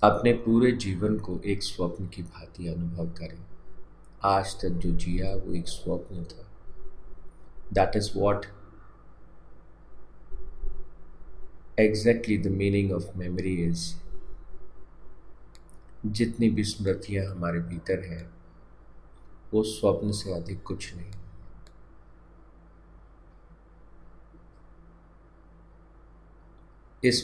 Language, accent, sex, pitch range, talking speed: Hindi, native, male, 85-105 Hz, 80 wpm